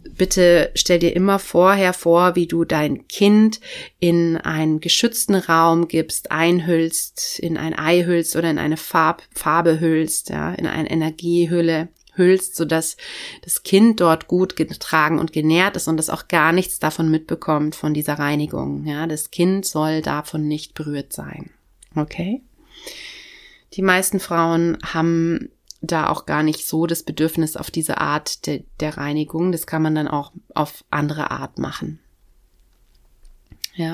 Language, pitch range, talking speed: German, 155-185 Hz, 150 wpm